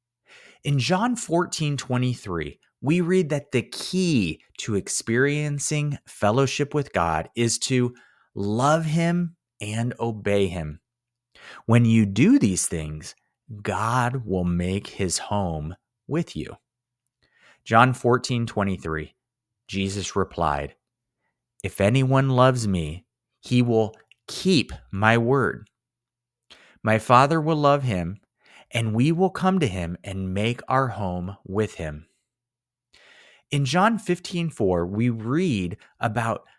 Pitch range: 100-140 Hz